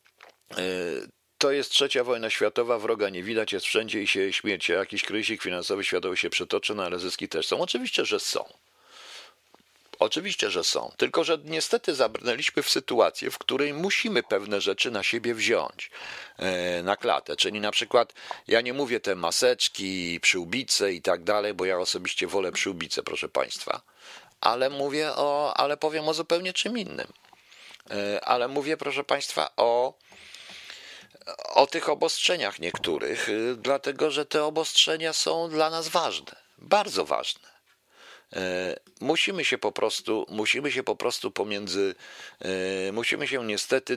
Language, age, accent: Polish, 50-69, native